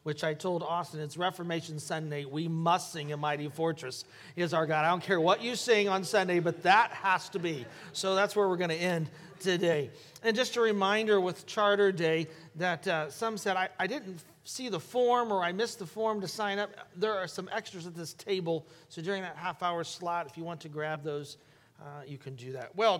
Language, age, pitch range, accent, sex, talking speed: English, 40-59, 160-200 Hz, American, male, 225 wpm